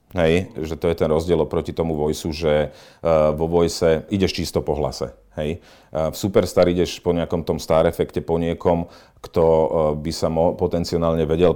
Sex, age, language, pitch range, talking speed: male, 40-59, Slovak, 80-100 Hz, 170 wpm